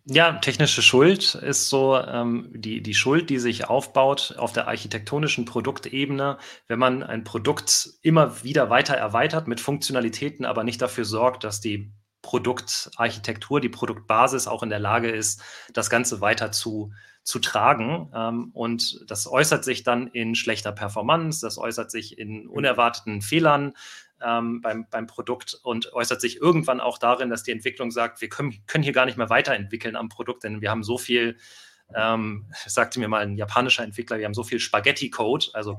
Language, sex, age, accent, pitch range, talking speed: German, male, 30-49, German, 110-130 Hz, 170 wpm